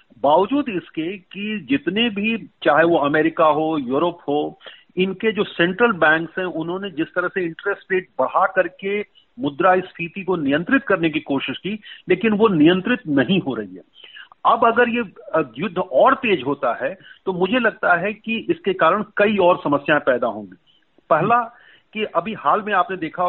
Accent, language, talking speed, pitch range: native, Hindi, 175 wpm, 160-210 Hz